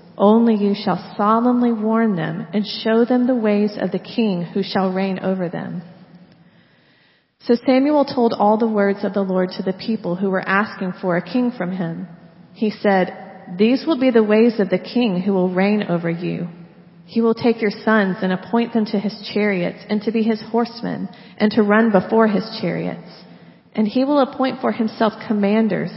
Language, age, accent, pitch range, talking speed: English, 40-59, American, 195-230 Hz, 190 wpm